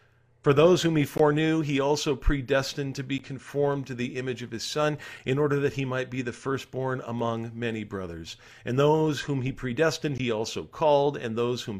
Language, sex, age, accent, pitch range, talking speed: English, male, 40-59, American, 115-165 Hz, 200 wpm